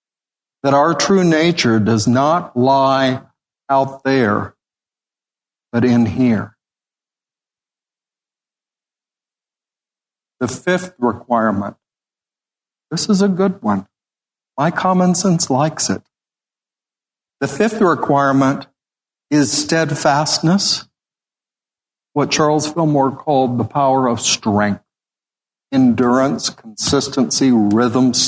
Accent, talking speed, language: American, 85 wpm, English